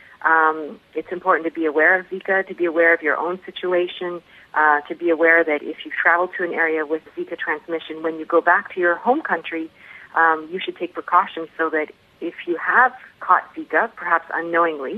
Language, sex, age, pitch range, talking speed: English, female, 40-59, 155-185 Hz, 205 wpm